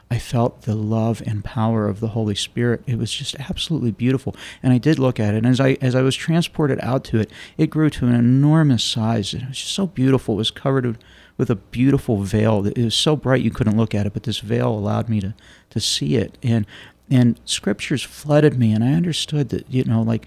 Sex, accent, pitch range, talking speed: male, American, 110-140 Hz, 235 wpm